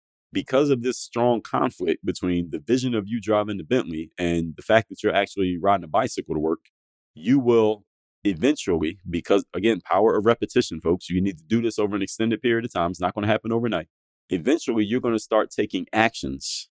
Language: English